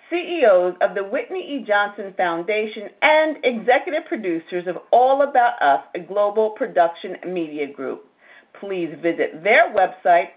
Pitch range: 175-255 Hz